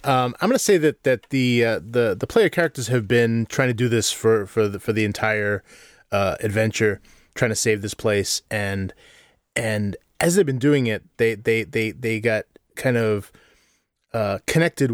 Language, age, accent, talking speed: English, 30-49, American, 195 wpm